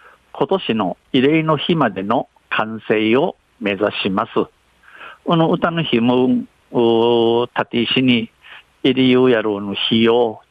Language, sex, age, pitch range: Japanese, male, 60-79, 115-155 Hz